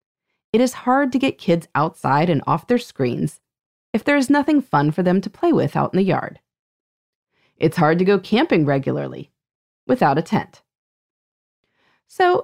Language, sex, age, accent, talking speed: English, female, 30-49, American, 170 wpm